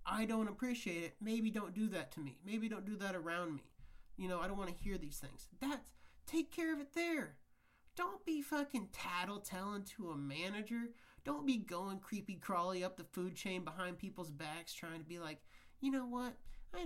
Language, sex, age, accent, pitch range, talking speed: English, male, 30-49, American, 160-215 Hz, 205 wpm